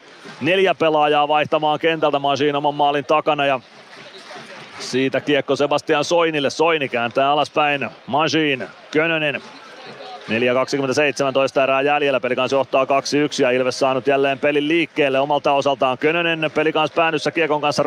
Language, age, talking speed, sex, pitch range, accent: Finnish, 30-49, 130 wpm, male, 130-145 Hz, native